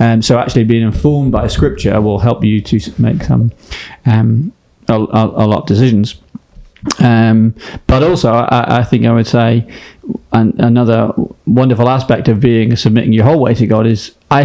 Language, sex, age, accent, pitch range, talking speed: English, male, 30-49, British, 115-125 Hz, 175 wpm